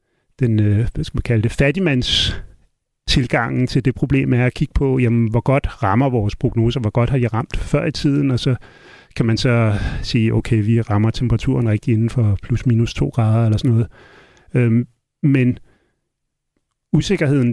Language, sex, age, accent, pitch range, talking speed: Danish, male, 40-59, native, 115-145 Hz, 155 wpm